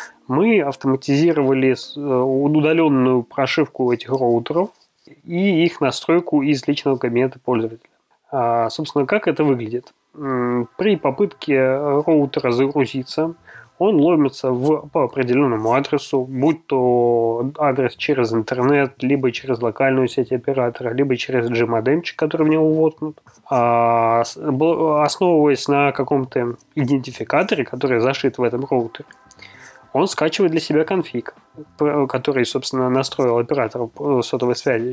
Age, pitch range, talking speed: 20-39, 120-145 Hz, 110 wpm